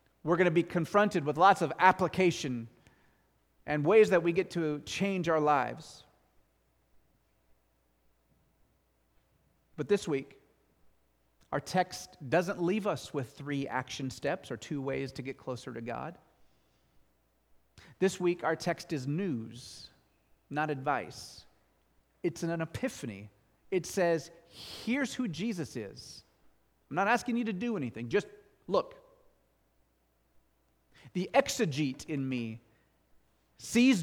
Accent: American